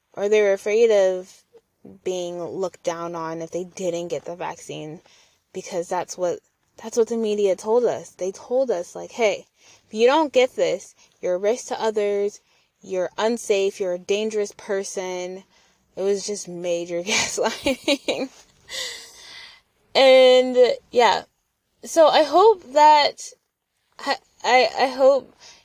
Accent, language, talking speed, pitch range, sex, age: American, English, 140 wpm, 180-230 Hz, female, 20-39